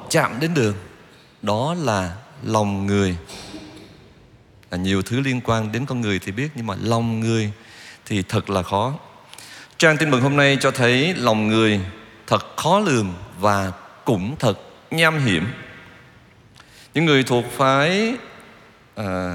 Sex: male